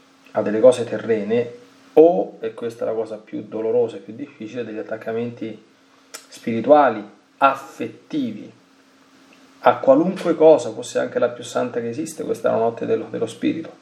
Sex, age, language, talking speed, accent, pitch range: male, 30-49, Italian, 155 wpm, native, 105-165 Hz